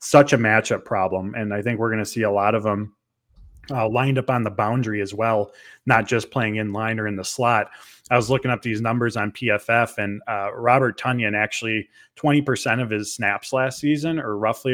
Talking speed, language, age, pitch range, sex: 215 wpm, English, 20-39, 105-125 Hz, male